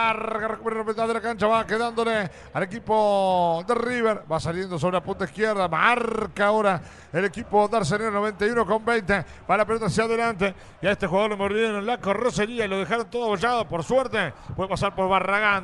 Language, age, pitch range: Spanish, 40-59, 185-230 Hz